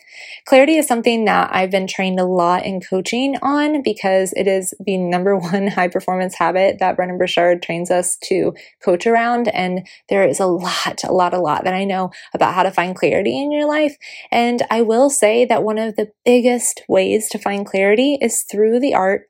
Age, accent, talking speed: 20-39, American, 205 wpm